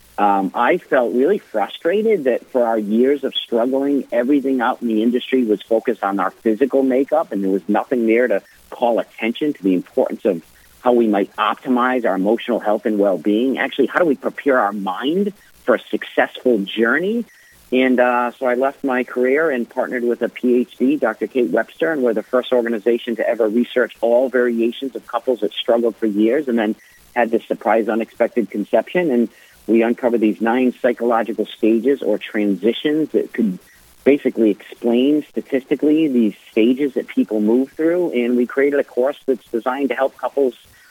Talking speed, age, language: 180 wpm, 50-69, English